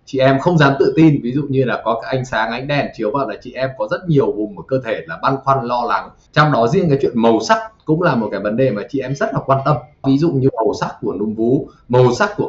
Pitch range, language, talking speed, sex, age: 125-155 Hz, Vietnamese, 305 wpm, male, 20-39